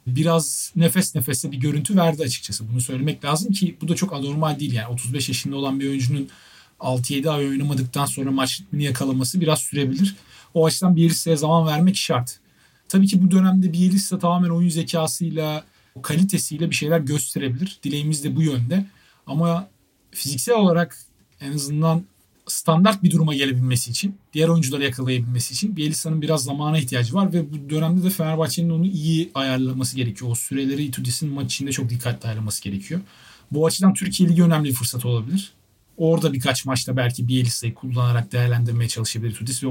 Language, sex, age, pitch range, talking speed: Turkish, male, 40-59, 125-170 Hz, 165 wpm